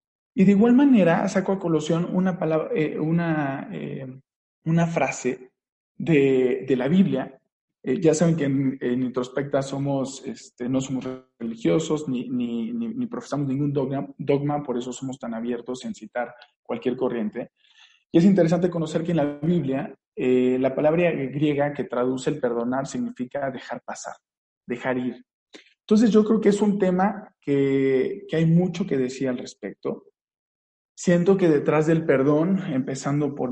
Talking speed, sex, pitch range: 160 wpm, male, 130-170 Hz